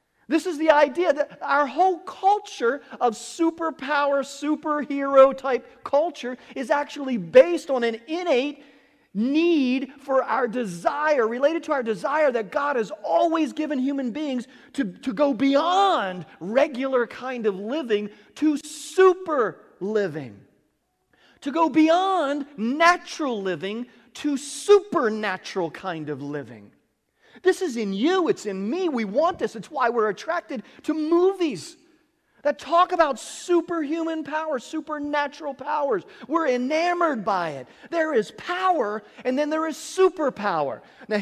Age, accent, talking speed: 40-59, American, 130 wpm